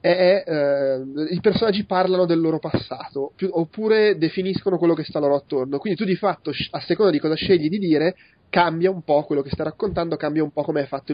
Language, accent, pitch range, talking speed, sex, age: Italian, native, 135-175 Hz, 205 wpm, male, 20-39